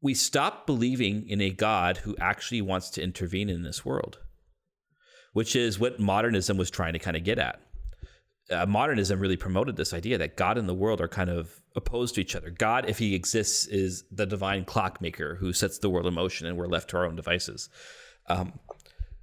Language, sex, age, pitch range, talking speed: English, male, 30-49, 90-110 Hz, 205 wpm